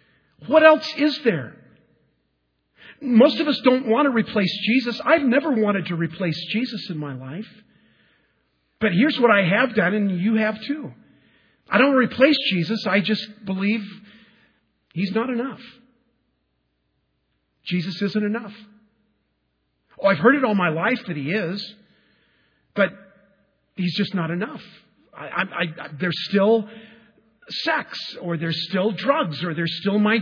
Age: 50-69